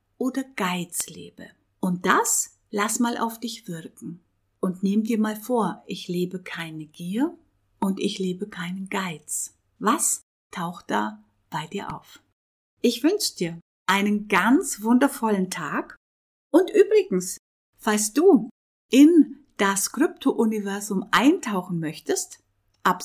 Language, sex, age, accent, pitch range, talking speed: German, female, 50-69, German, 185-255 Hz, 120 wpm